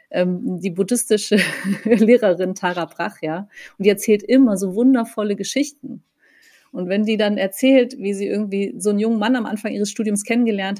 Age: 30-49